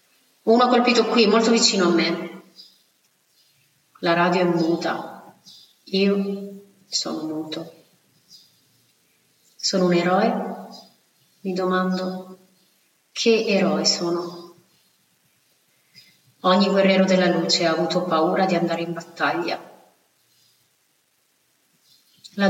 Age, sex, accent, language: 30-49, female, native, Italian